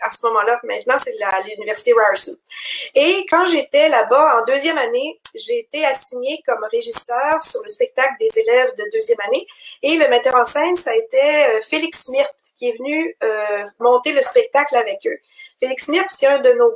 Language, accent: English, Canadian